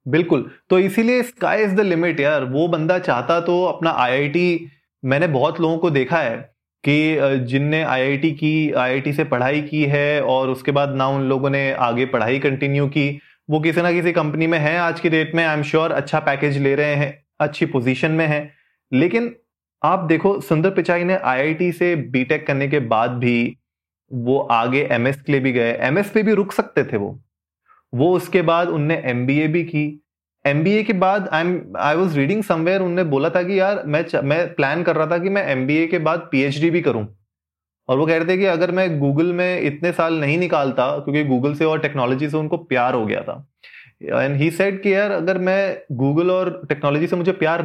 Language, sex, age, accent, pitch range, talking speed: Hindi, male, 20-39, native, 140-180 Hz, 205 wpm